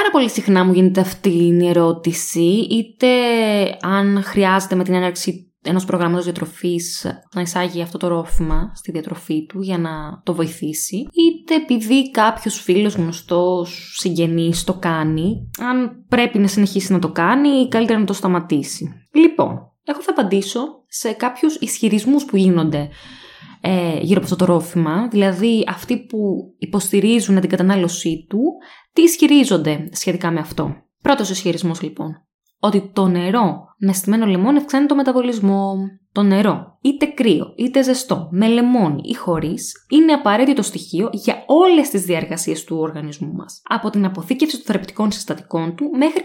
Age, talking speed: 20-39, 150 wpm